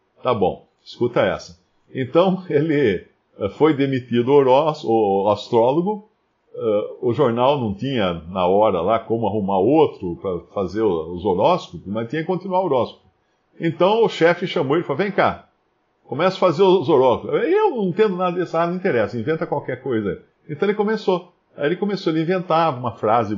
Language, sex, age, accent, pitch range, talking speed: Portuguese, male, 50-69, Brazilian, 130-185 Hz, 165 wpm